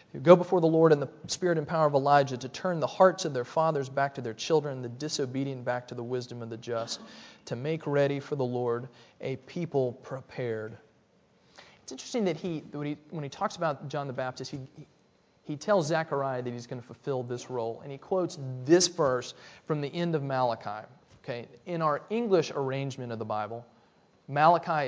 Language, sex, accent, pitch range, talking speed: English, male, American, 125-155 Hz, 200 wpm